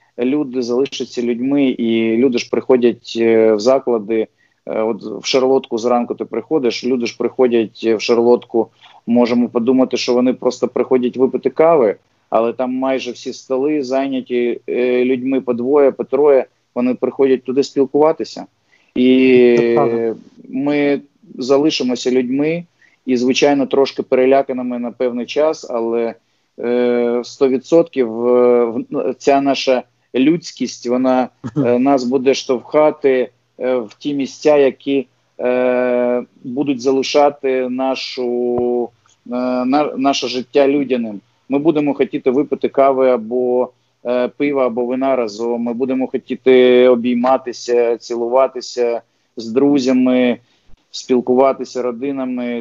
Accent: native